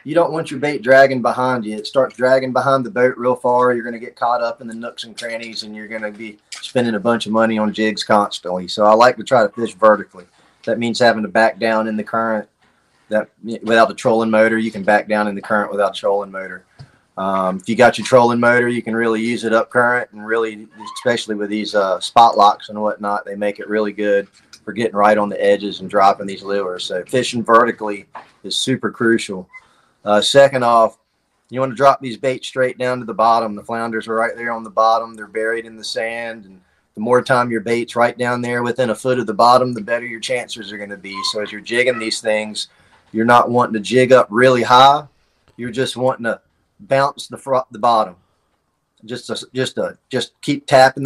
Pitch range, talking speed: 105-125 Hz, 230 wpm